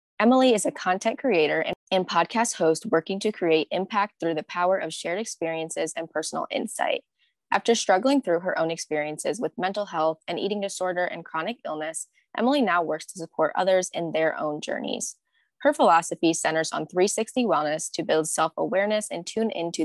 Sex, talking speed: female, 180 wpm